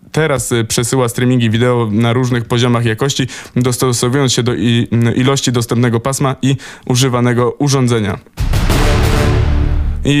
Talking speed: 105 wpm